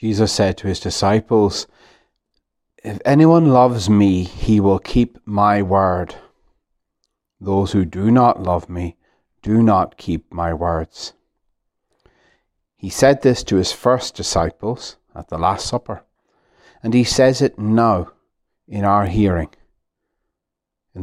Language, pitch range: English, 95-125 Hz